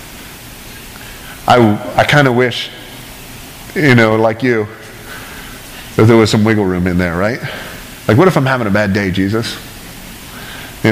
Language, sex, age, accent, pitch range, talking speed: English, male, 40-59, American, 110-140 Hz, 150 wpm